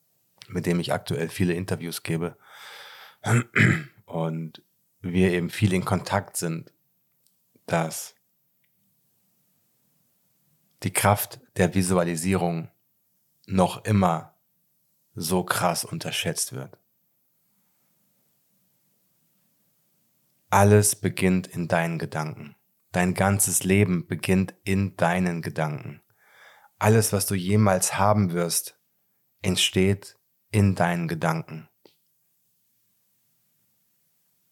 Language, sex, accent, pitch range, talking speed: German, male, German, 90-105 Hz, 80 wpm